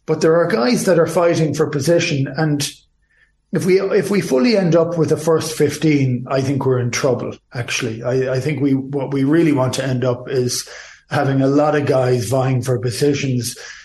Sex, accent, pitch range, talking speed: male, Irish, 125-150 Hz, 205 wpm